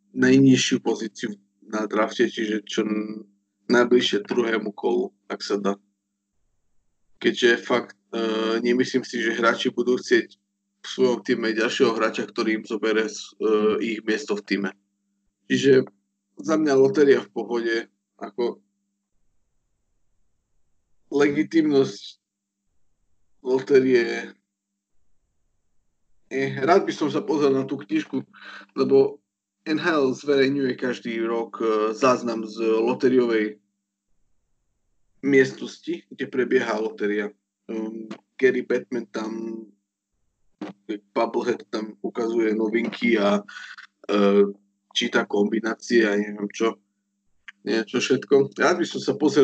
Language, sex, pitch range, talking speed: Slovak, male, 100-120 Hz, 110 wpm